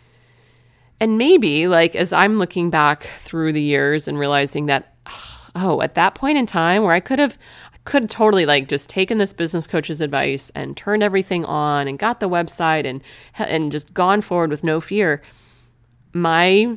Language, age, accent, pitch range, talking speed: English, 30-49, American, 150-200 Hz, 175 wpm